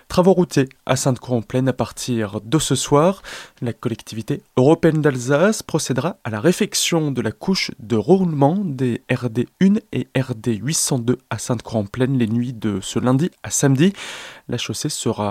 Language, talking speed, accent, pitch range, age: French, 150 wpm, French, 120-160 Hz, 20-39